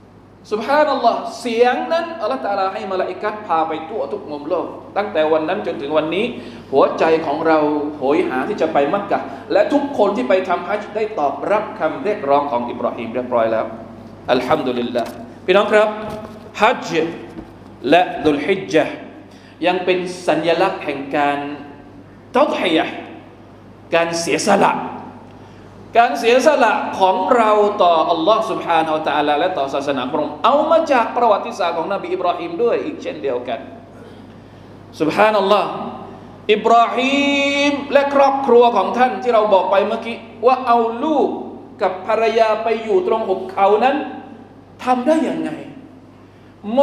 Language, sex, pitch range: Thai, male, 165-245 Hz